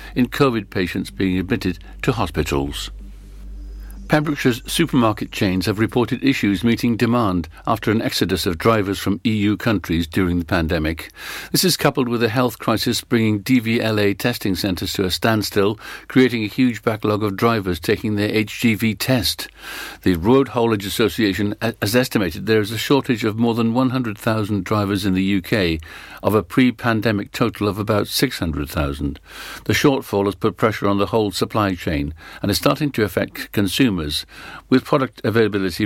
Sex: male